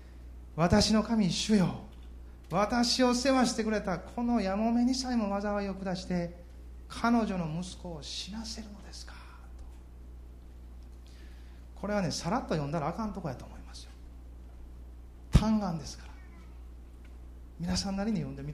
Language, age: Japanese, 30-49